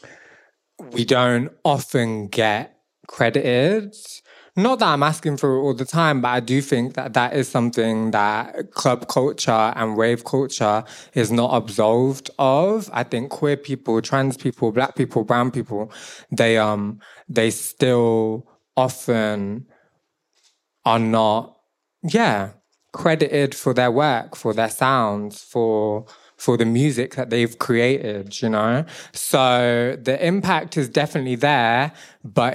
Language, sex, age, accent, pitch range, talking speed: English, male, 20-39, British, 115-140 Hz, 135 wpm